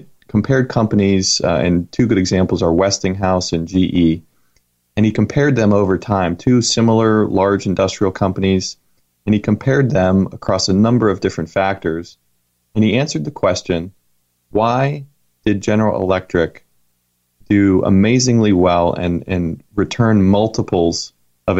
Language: English